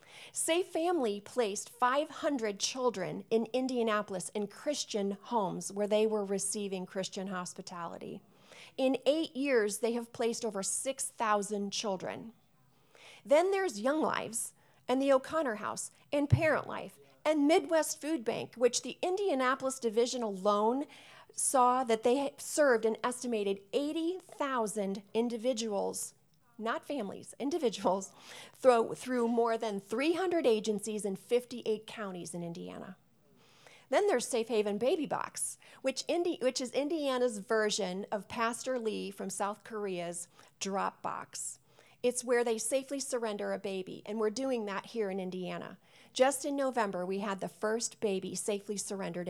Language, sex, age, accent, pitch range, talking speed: English, female, 30-49, American, 200-260 Hz, 130 wpm